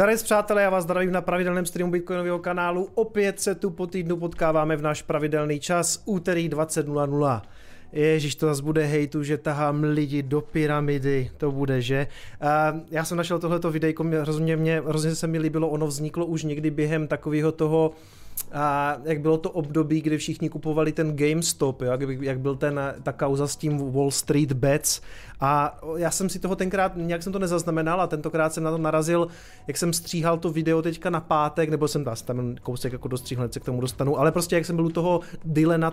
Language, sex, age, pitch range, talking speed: Czech, male, 30-49, 150-170 Hz, 195 wpm